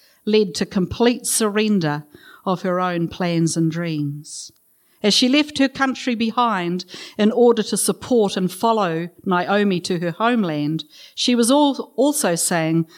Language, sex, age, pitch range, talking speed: English, female, 50-69, 160-215 Hz, 140 wpm